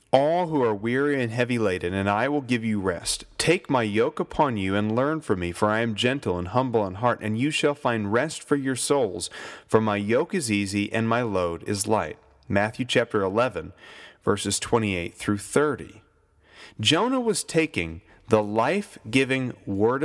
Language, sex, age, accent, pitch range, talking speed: English, male, 30-49, American, 100-140 Hz, 185 wpm